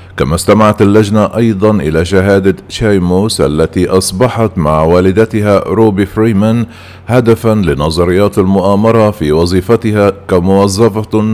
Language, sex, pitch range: Arabic, male, 95-110 Hz